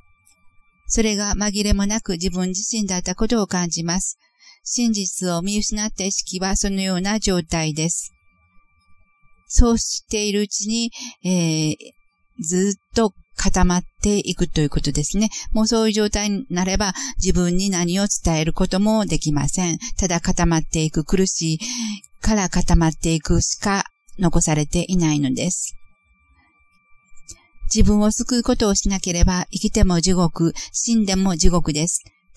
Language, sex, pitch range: Japanese, female, 170-210 Hz